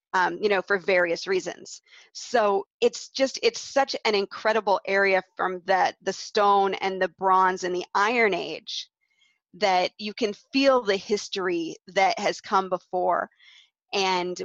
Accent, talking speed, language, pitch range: American, 150 wpm, English, 190-245 Hz